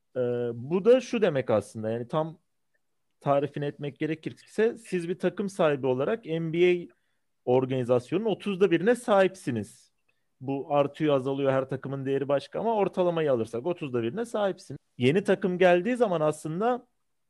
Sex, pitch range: male, 135-195 Hz